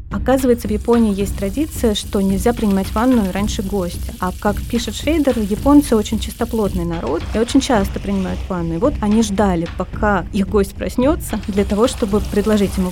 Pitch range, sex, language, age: 195-235 Hz, female, Russian, 30-49